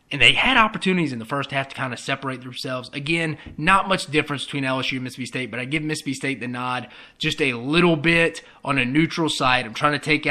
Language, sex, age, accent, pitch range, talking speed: English, male, 20-39, American, 130-155 Hz, 240 wpm